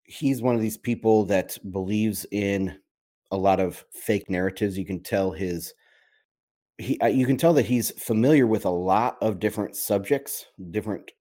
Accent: American